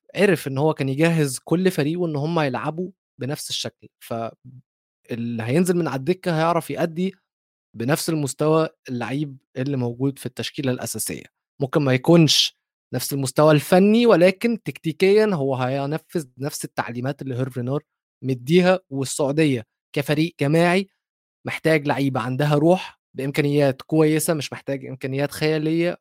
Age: 20-39